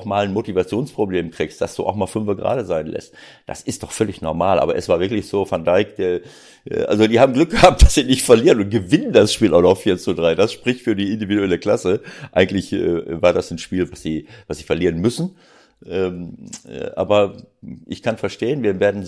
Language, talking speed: German, 215 wpm